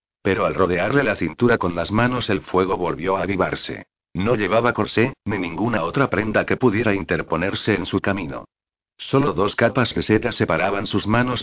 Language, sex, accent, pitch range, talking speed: Spanish, male, Spanish, 95-115 Hz, 180 wpm